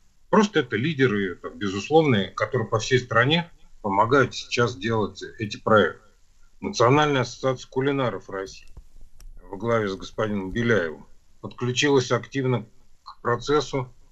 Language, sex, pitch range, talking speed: Russian, male, 105-130 Hz, 110 wpm